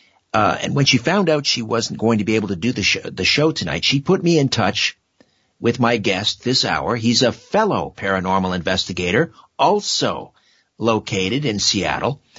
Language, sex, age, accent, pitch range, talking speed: English, male, 50-69, American, 115-155 Hz, 185 wpm